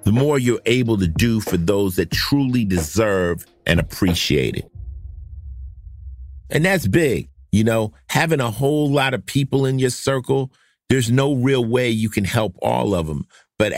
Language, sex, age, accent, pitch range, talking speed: English, male, 50-69, American, 90-120 Hz, 170 wpm